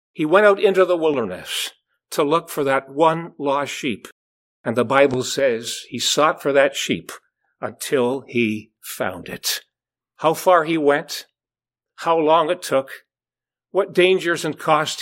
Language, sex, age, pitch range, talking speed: English, male, 50-69, 140-205 Hz, 150 wpm